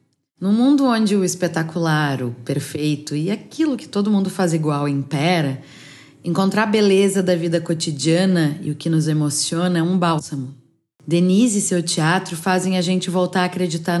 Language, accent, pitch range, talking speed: Portuguese, Brazilian, 155-180 Hz, 165 wpm